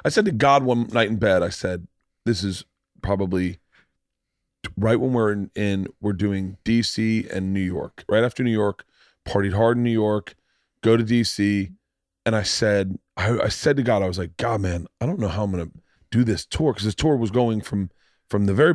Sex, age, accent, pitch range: male, 30-49, American, 100-130 Hz